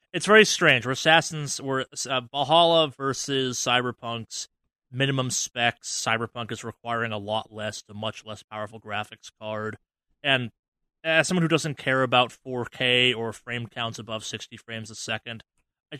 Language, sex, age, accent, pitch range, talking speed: English, male, 30-49, American, 110-125 Hz, 155 wpm